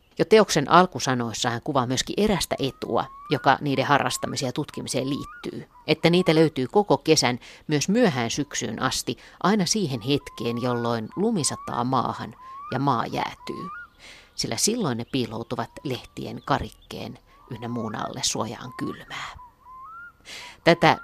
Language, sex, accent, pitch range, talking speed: Finnish, female, native, 120-160 Hz, 125 wpm